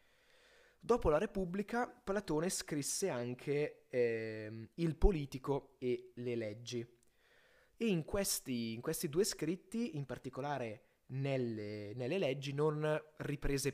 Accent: native